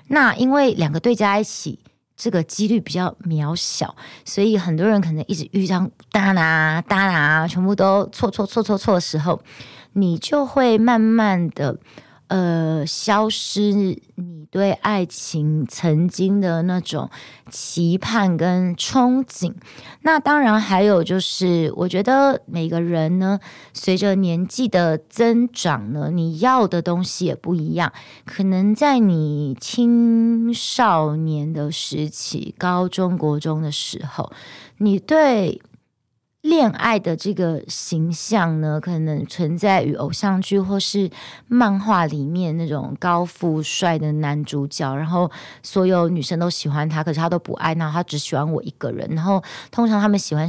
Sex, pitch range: female, 155-205 Hz